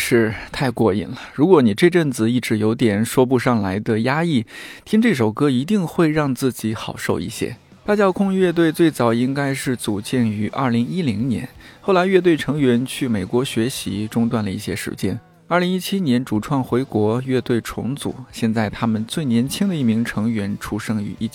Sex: male